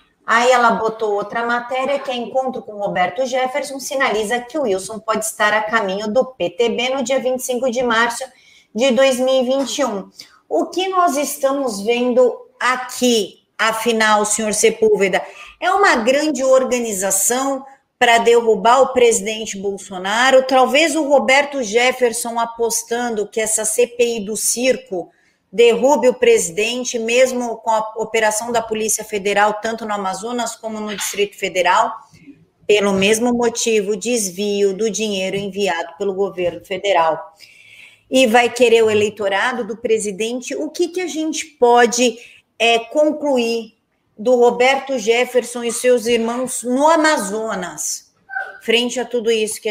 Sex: female